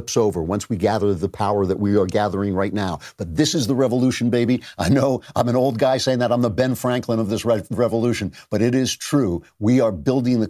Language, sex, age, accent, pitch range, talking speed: English, male, 50-69, American, 95-130 Hz, 240 wpm